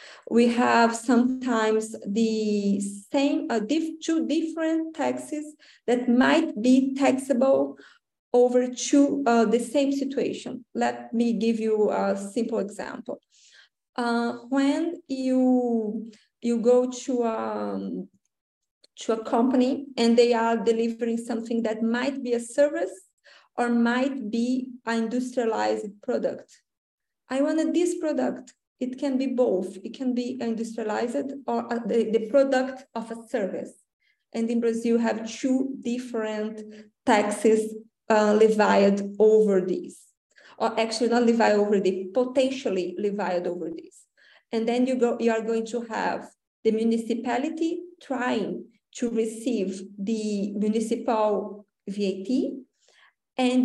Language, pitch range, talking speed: English, 220-255 Hz, 125 wpm